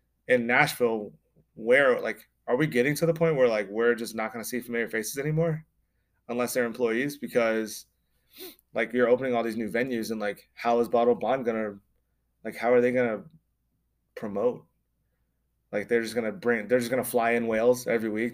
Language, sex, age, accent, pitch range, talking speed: English, male, 20-39, American, 105-120 Hz, 205 wpm